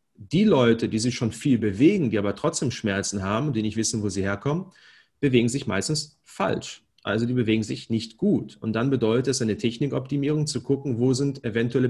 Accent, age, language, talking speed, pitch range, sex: German, 30-49, German, 195 wpm, 115-140 Hz, male